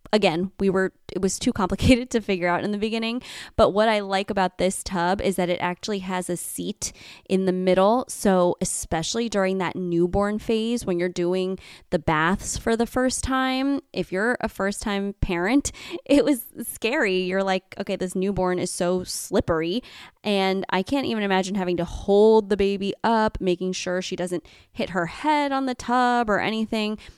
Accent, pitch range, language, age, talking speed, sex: American, 180-220 Hz, English, 20-39, 190 wpm, female